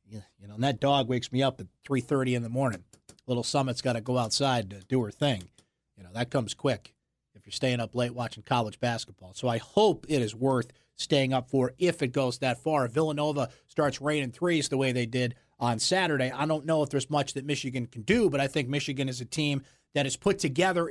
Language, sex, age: English, male, 30-49